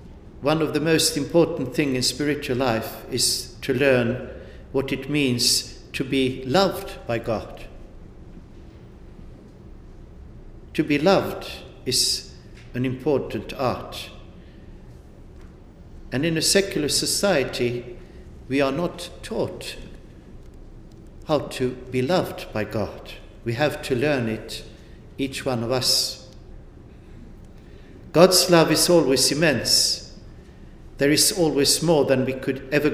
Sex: male